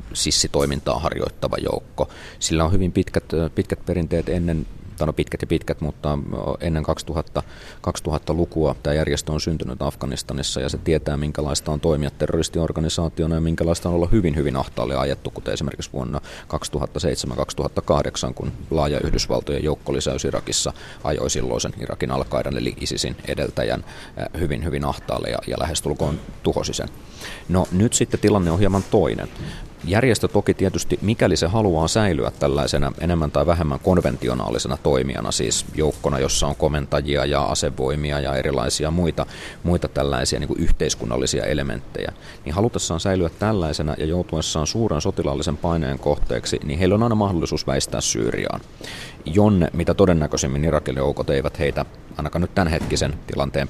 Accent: native